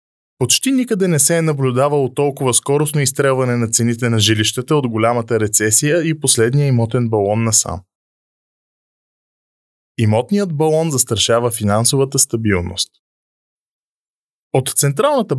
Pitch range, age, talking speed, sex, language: 115-155 Hz, 20-39, 115 wpm, male, Bulgarian